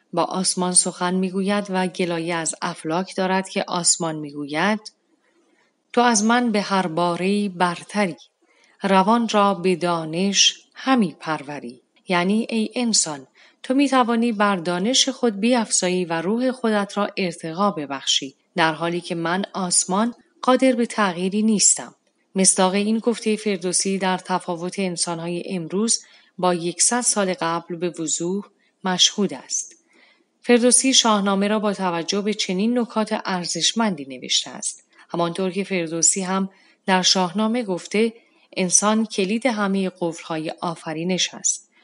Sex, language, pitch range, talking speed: female, Persian, 175-215 Hz, 130 wpm